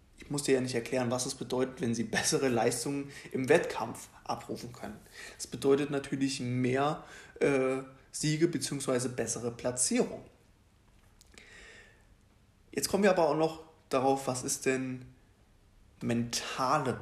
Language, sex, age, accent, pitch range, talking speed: German, male, 20-39, German, 115-140 Hz, 130 wpm